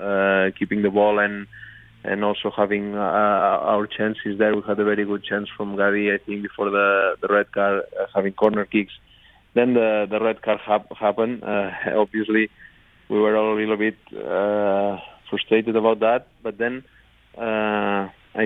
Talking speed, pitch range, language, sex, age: 170 wpm, 100-110 Hz, English, male, 20-39